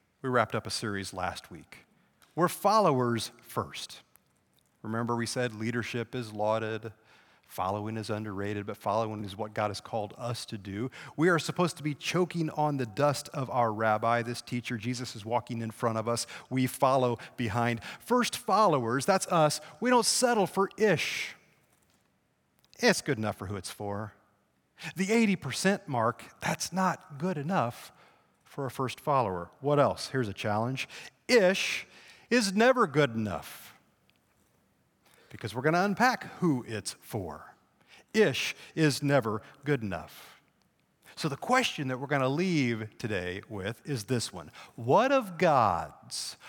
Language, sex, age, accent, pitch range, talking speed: English, male, 40-59, American, 110-160 Hz, 155 wpm